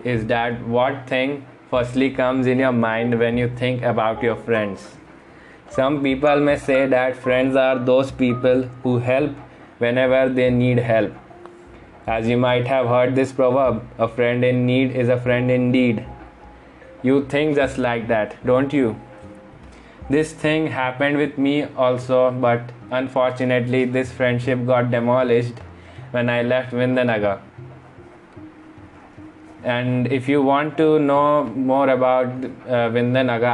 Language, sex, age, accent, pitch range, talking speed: English, male, 20-39, Indian, 120-130 Hz, 140 wpm